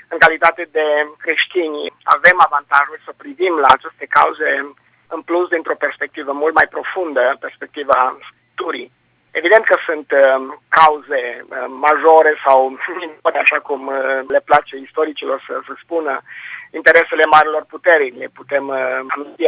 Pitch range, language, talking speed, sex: 135-160 Hz, Romanian, 125 wpm, male